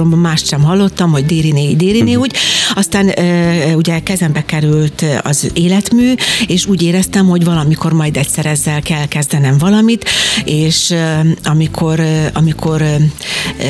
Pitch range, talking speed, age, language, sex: 150-180 Hz, 115 wpm, 60-79, Hungarian, female